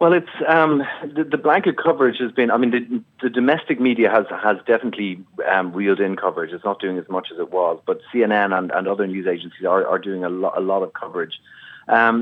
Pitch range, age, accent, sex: 90-105 Hz, 30-49, Irish, male